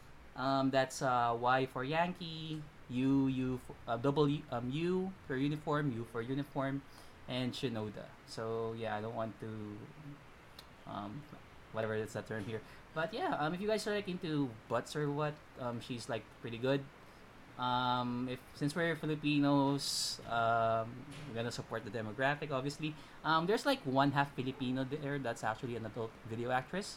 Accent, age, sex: native, 20-39, male